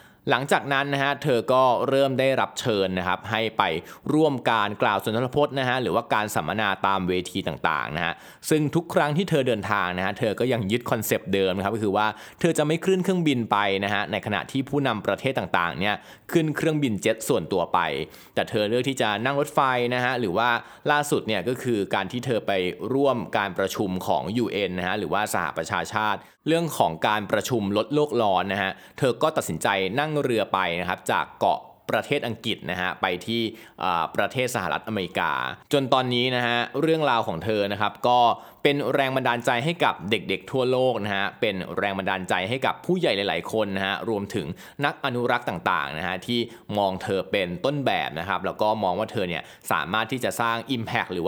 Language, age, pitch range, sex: Thai, 20-39, 105-135 Hz, male